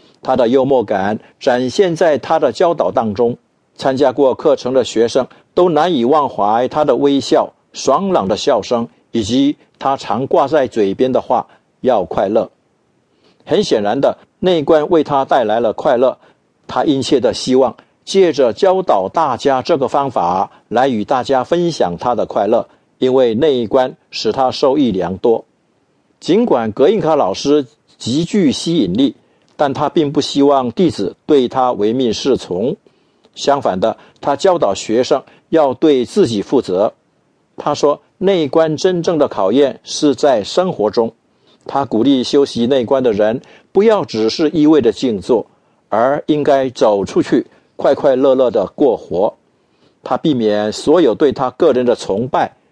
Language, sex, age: English, male, 50-69